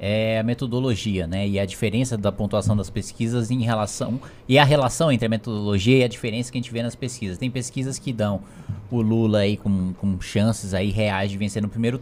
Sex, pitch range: male, 100-125 Hz